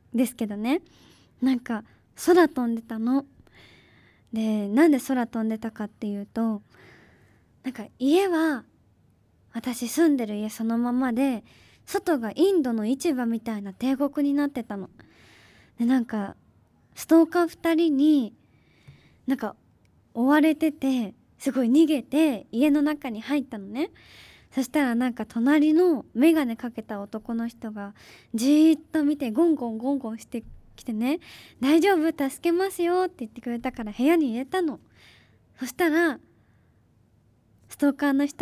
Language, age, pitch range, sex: Japanese, 20-39, 225-310 Hz, male